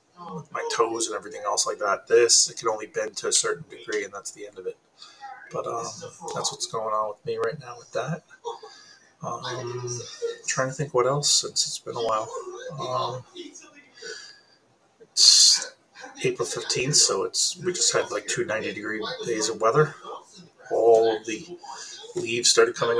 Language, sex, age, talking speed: English, male, 30-49, 170 wpm